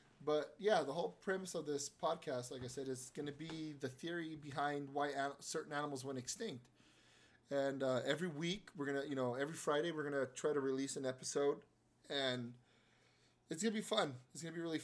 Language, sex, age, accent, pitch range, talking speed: English, male, 20-39, American, 130-165 Hz, 220 wpm